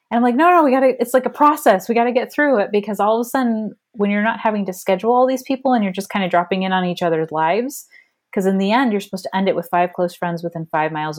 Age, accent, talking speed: 30-49, American, 315 wpm